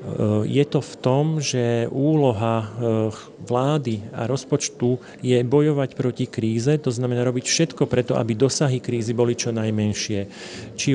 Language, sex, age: Slovak, male, 40-59